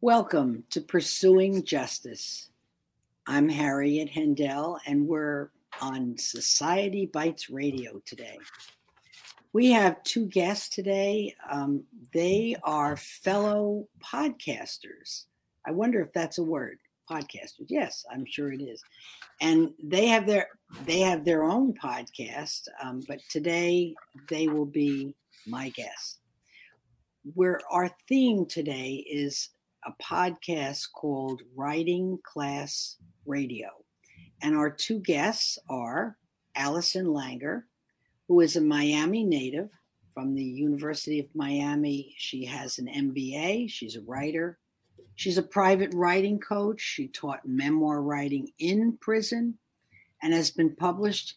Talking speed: 120 wpm